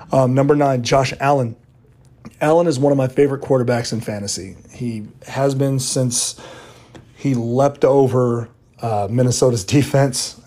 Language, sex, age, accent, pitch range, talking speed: English, male, 30-49, American, 105-135 Hz, 140 wpm